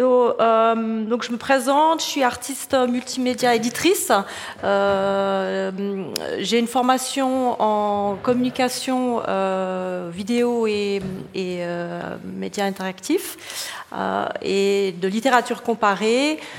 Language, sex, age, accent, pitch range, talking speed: French, female, 30-49, French, 195-235 Hz, 100 wpm